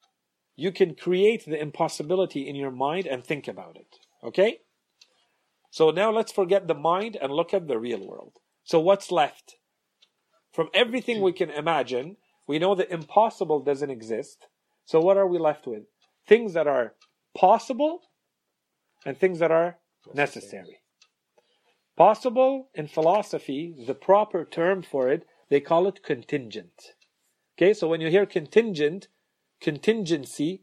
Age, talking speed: 40-59, 145 wpm